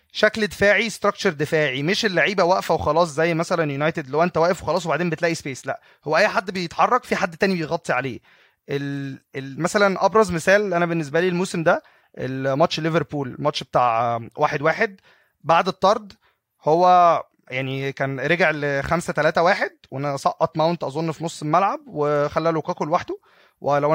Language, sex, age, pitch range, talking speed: Arabic, male, 20-39, 150-195 Hz, 150 wpm